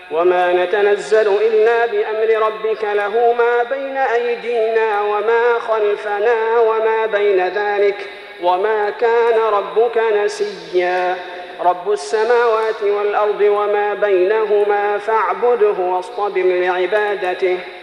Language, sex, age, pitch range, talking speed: Arabic, male, 40-59, 185-225 Hz, 90 wpm